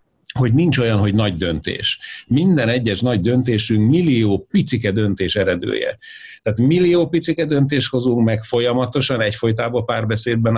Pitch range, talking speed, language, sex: 110-145 Hz, 130 wpm, Hungarian, male